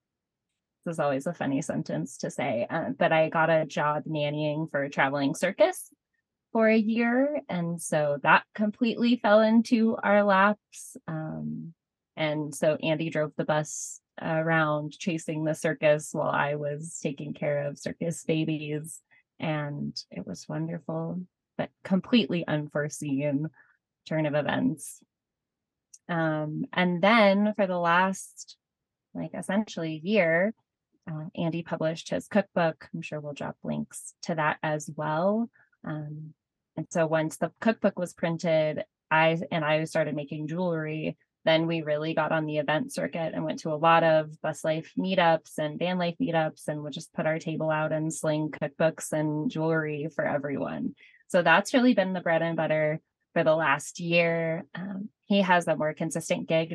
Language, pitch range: English, 155-180 Hz